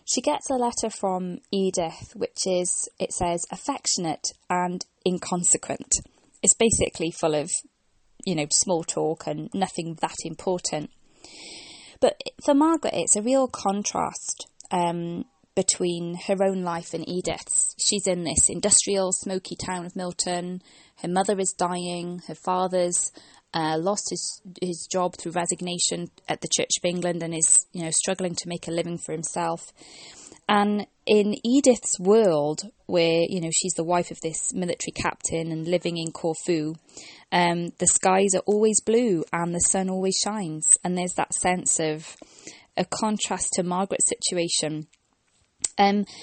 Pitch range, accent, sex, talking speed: 170-205 Hz, British, female, 155 wpm